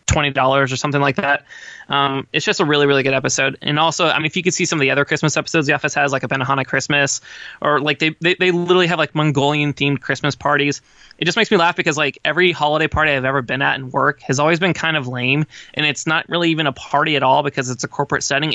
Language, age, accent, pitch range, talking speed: English, 20-39, American, 140-170 Hz, 260 wpm